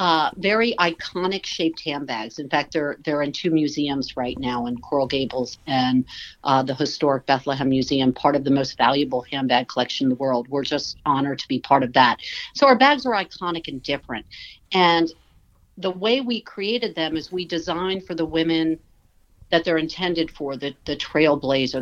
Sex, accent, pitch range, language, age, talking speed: female, American, 135-175 Hz, English, 50-69, 185 wpm